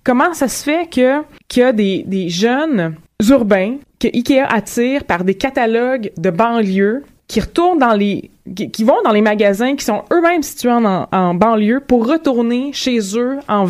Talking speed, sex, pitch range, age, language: 175 wpm, female, 195-250 Hz, 20-39, French